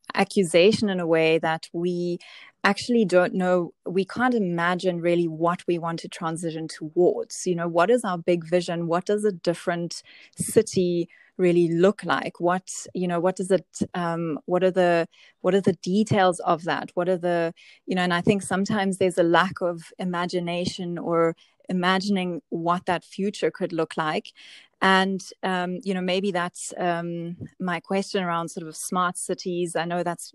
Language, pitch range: English, 170-190 Hz